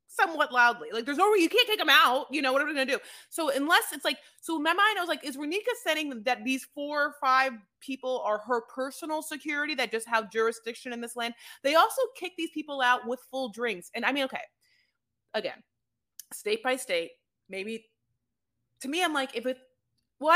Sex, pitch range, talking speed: female, 220-300 Hz, 220 wpm